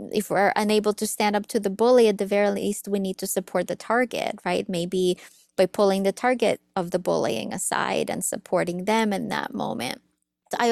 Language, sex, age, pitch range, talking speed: English, female, 20-39, 200-240 Hz, 200 wpm